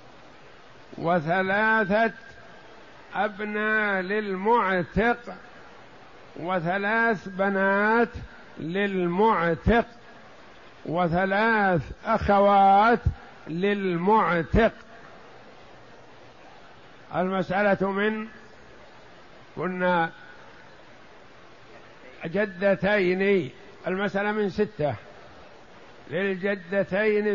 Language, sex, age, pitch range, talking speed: Arabic, male, 50-69, 150-205 Hz, 35 wpm